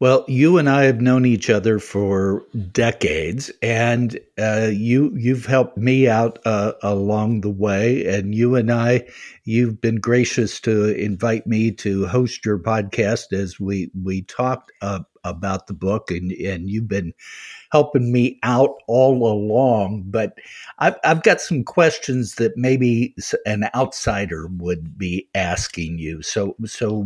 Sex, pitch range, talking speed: male, 105-130 Hz, 155 wpm